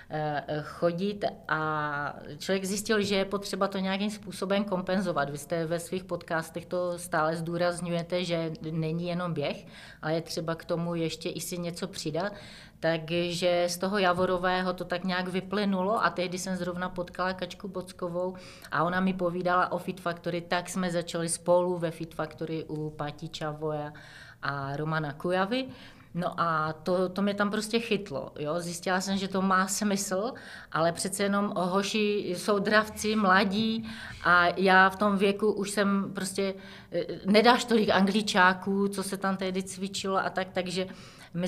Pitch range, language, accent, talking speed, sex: 165-195 Hz, Czech, native, 160 wpm, female